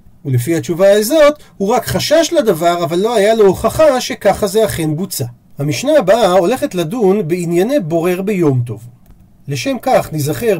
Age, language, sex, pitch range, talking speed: 40-59, Hebrew, male, 150-225 Hz, 155 wpm